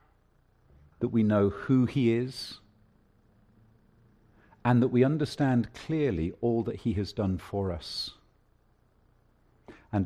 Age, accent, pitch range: 50-69, British, 95-120 Hz